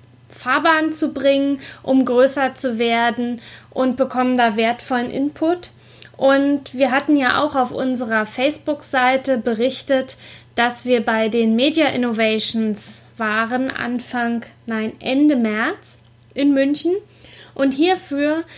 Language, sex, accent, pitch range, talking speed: German, female, German, 235-280 Hz, 115 wpm